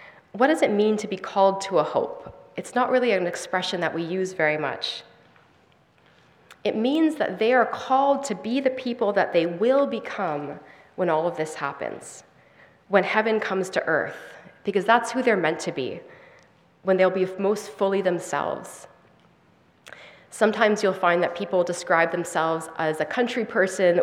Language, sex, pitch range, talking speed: English, female, 175-245 Hz, 170 wpm